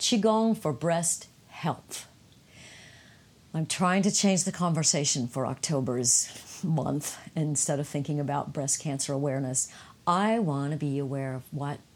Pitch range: 135-165 Hz